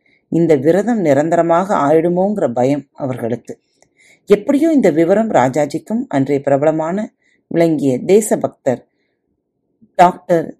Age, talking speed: 30-49, 90 wpm